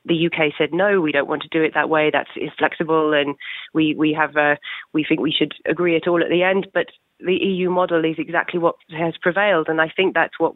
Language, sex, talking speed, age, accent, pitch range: English, female, 250 wpm, 30-49, British, 160-180 Hz